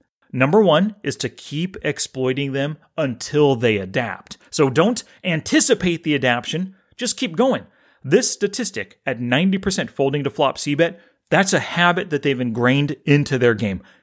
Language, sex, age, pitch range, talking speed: English, male, 30-49, 120-180 Hz, 150 wpm